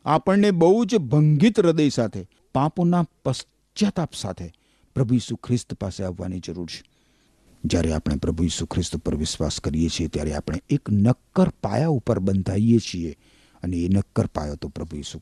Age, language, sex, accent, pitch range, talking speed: 50-69, Gujarati, male, native, 100-170 Hz, 40 wpm